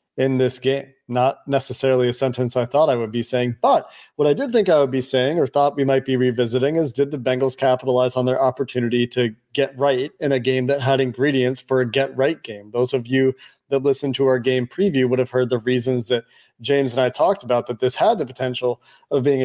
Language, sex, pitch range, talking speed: English, male, 125-140 Hz, 240 wpm